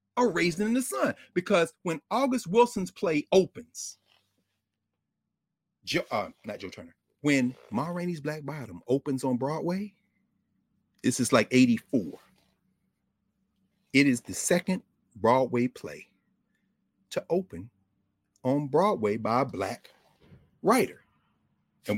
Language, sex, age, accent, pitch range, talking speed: English, male, 40-59, American, 140-220 Hz, 115 wpm